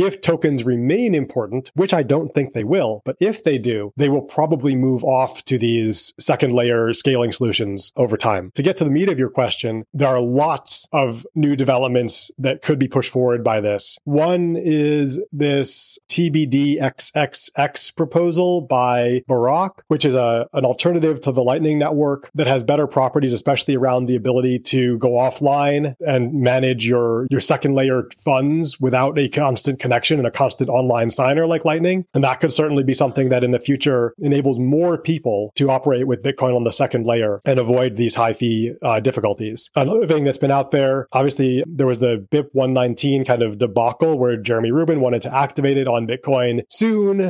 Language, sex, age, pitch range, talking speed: English, male, 30-49, 125-150 Hz, 185 wpm